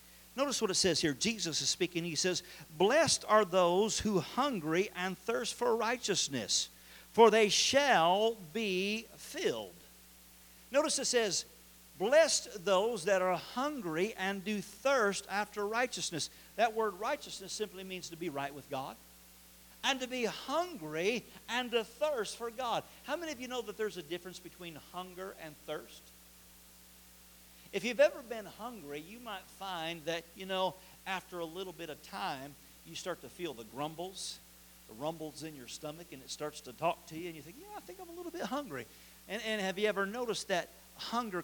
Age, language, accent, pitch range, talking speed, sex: 50-69, English, American, 145-210 Hz, 180 wpm, male